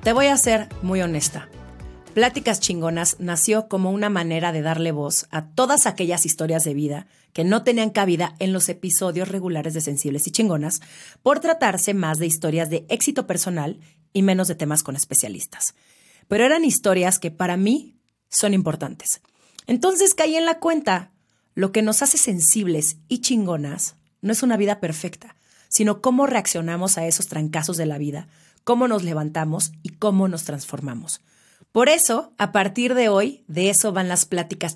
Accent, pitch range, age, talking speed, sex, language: Mexican, 160-215 Hz, 40-59, 170 wpm, female, Spanish